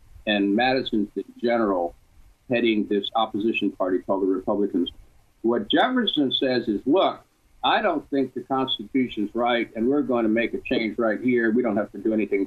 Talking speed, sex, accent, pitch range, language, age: 175 wpm, male, American, 105-140 Hz, English, 50-69